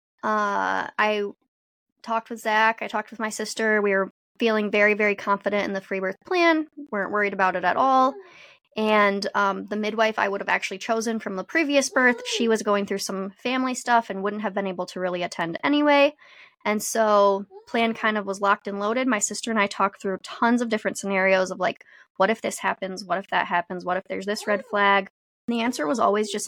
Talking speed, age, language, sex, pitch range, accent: 220 wpm, 10-29, English, female, 195-230 Hz, American